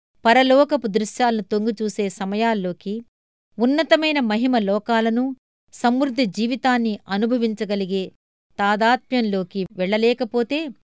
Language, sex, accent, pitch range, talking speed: Telugu, female, native, 195-240 Hz, 60 wpm